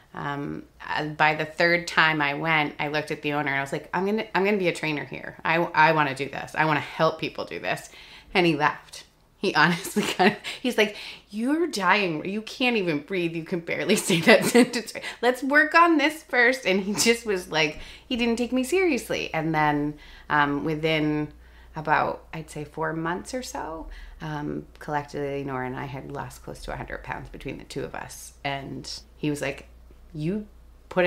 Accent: American